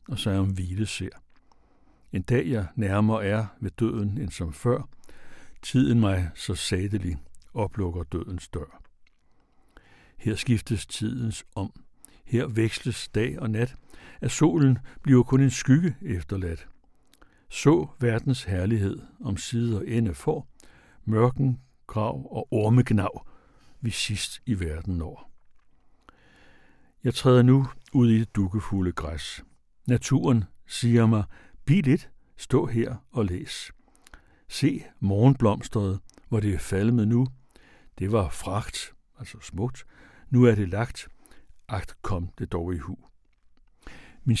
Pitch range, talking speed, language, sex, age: 95-125 Hz, 125 wpm, Danish, male, 60-79